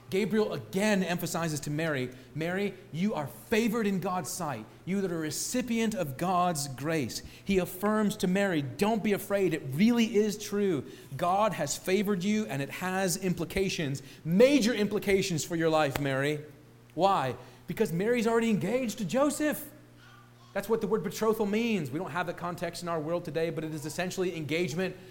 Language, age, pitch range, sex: English, 40-59, 160-210 Hz, male